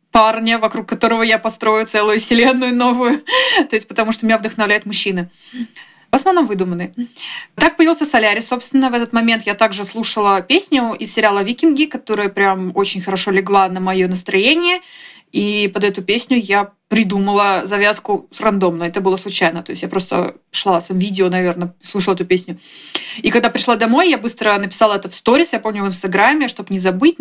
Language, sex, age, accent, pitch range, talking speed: Russian, female, 20-39, native, 190-240 Hz, 175 wpm